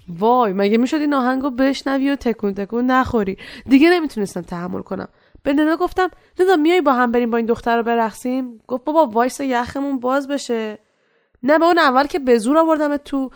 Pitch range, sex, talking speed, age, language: 195-285 Hz, female, 185 wpm, 20-39, Persian